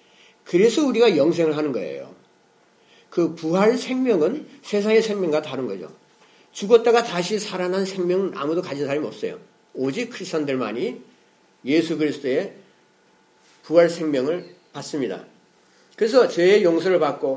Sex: male